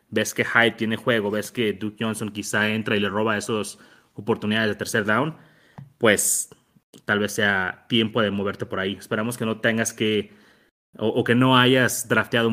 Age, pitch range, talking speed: 30-49, 105-125 Hz, 185 wpm